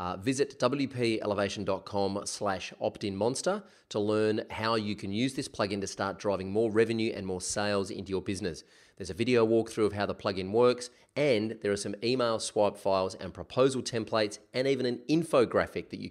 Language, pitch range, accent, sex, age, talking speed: English, 100-125 Hz, Australian, male, 30-49, 185 wpm